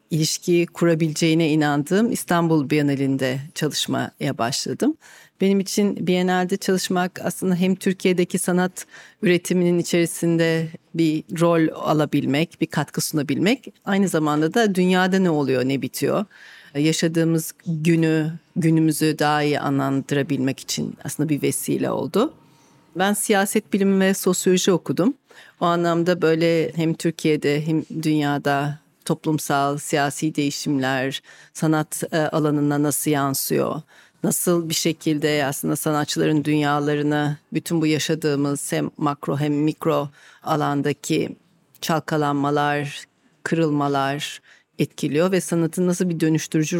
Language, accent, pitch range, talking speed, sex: Turkish, native, 145-175 Hz, 110 wpm, female